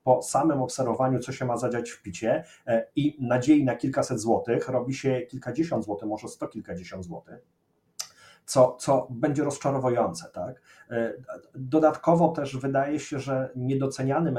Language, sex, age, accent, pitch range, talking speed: Polish, male, 30-49, native, 120-140 Hz, 140 wpm